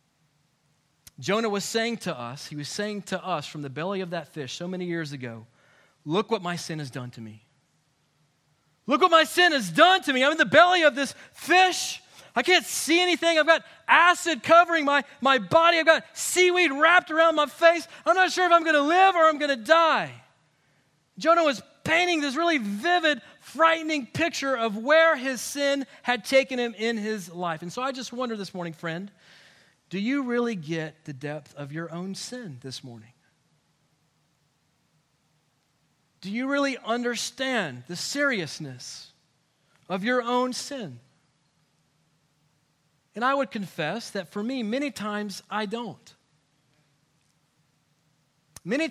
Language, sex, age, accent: English, male, 30-49, American